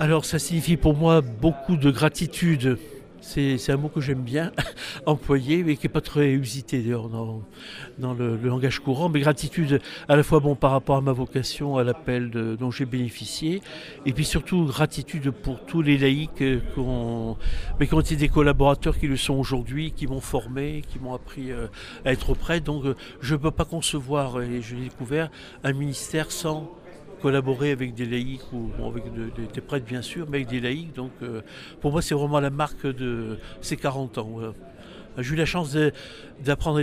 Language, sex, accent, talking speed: French, male, French, 200 wpm